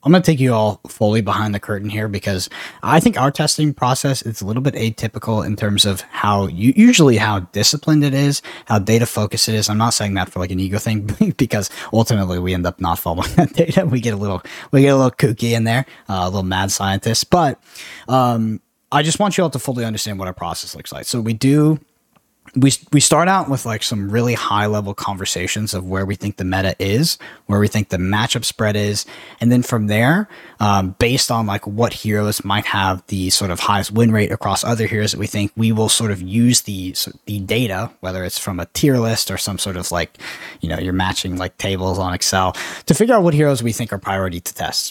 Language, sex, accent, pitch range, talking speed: English, male, American, 100-125 Hz, 230 wpm